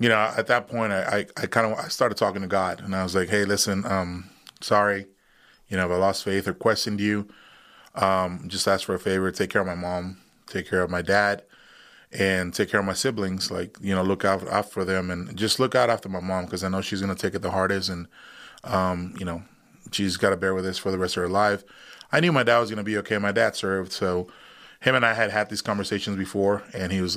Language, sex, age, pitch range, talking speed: English, male, 20-39, 95-105 Hz, 250 wpm